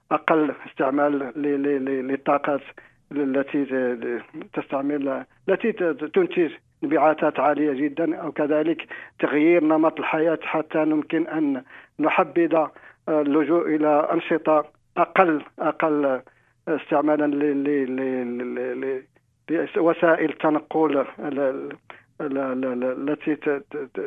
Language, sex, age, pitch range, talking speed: Arabic, male, 50-69, 140-165 Hz, 70 wpm